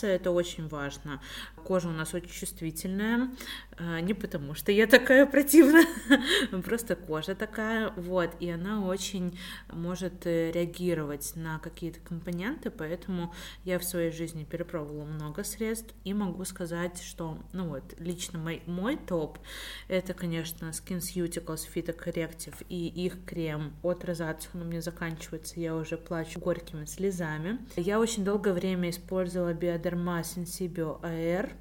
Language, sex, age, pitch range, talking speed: Russian, female, 20-39, 170-200 Hz, 135 wpm